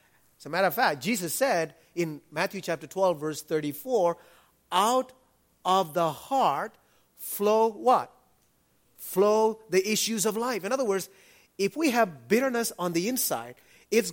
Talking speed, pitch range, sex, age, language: 150 wpm, 140-215 Hz, male, 30-49, English